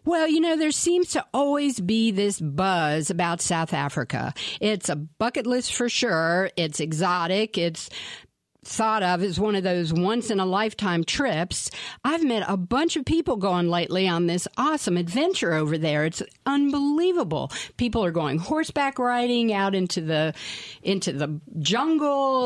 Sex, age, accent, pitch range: female, 50-69, American, 170-245 Hz